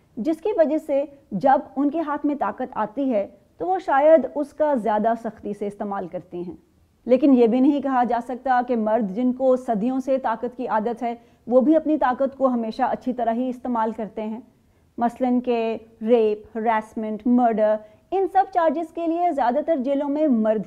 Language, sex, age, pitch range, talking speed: Urdu, female, 30-49, 225-295 Hz, 195 wpm